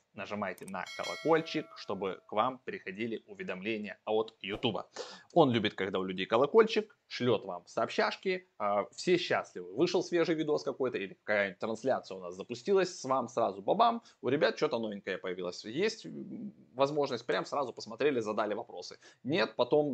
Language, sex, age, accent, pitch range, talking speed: Russian, male, 20-39, native, 110-165 Hz, 150 wpm